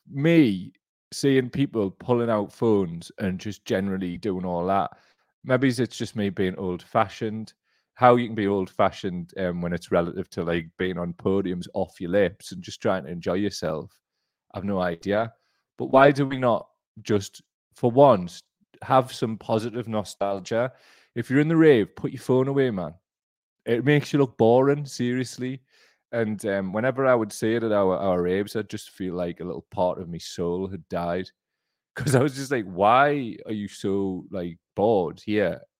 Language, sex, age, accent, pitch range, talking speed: English, male, 30-49, British, 90-125 Hz, 180 wpm